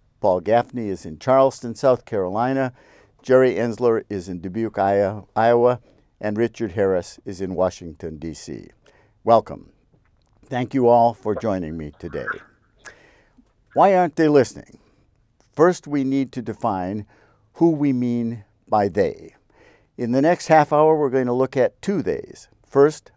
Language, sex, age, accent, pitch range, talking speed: English, male, 50-69, American, 105-130 Hz, 140 wpm